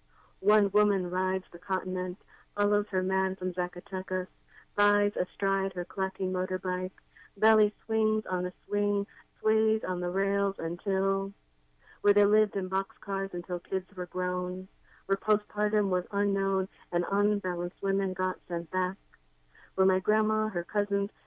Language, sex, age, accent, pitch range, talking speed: English, female, 30-49, American, 185-200 Hz, 140 wpm